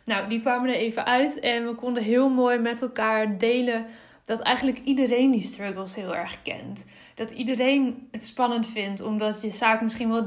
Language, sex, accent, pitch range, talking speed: Dutch, female, Dutch, 220-250 Hz, 185 wpm